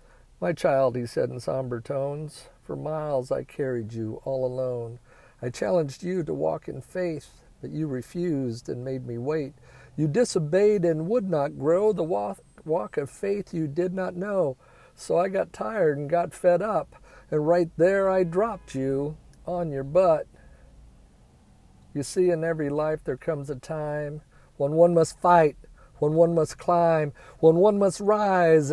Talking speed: 165 wpm